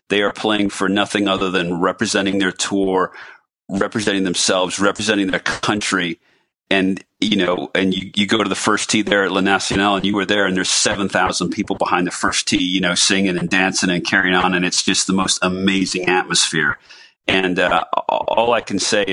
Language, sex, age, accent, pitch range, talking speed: English, male, 40-59, American, 90-100 Hz, 200 wpm